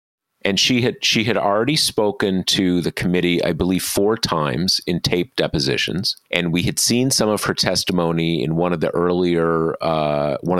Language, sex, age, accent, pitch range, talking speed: English, male, 40-59, American, 85-135 Hz, 180 wpm